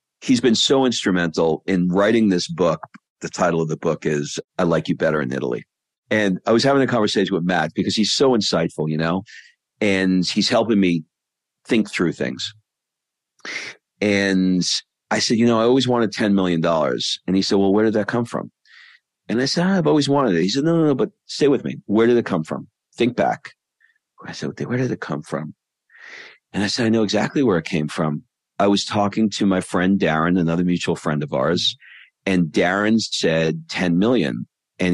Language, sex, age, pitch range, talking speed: English, male, 40-59, 85-110 Hz, 205 wpm